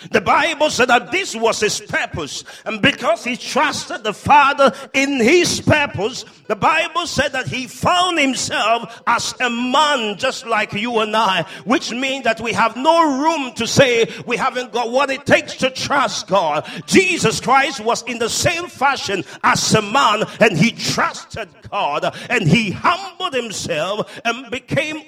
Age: 50-69